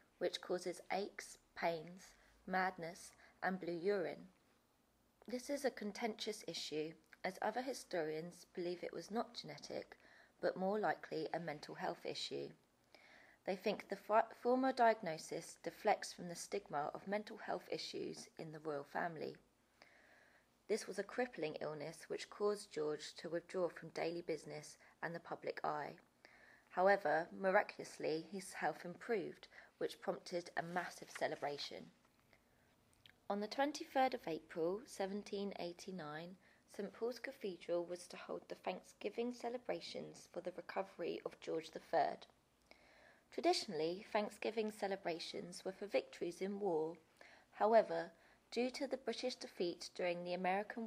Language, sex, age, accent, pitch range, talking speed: English, female, 20-39, British, 170-220 Hz, 130 wpm